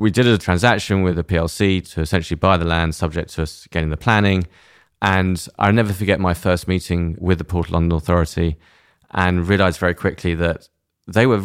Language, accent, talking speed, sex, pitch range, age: English, British, 200 wpm, male, 80-95 Hz, 30-49